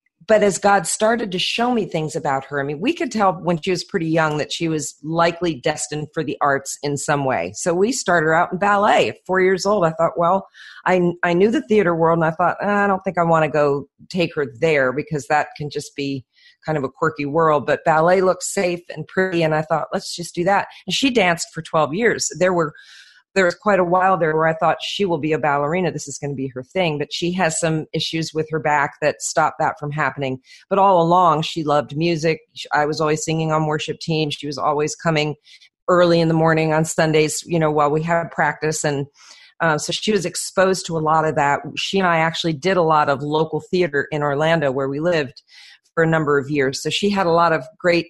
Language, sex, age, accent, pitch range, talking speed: English, female, 40-59, American, 150-185 Hz, 245 wpm